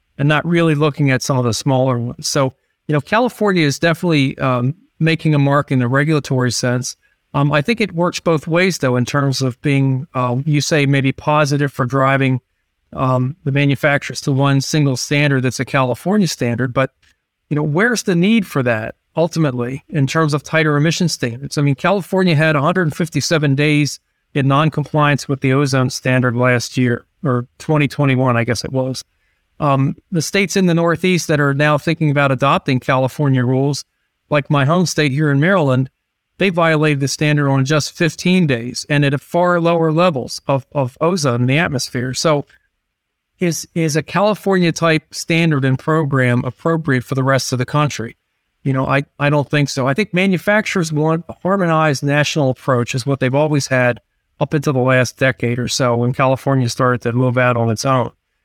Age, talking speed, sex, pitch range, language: 40-59, 185 wpm, male, 130-160 Hz, English